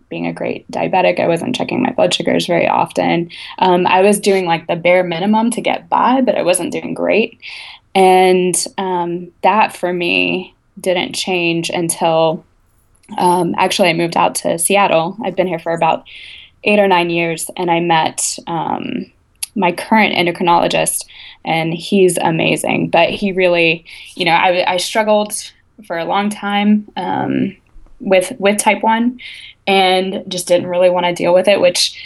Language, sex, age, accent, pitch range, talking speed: English, female, 20-39, American, 175-200 Hz, 165 wpm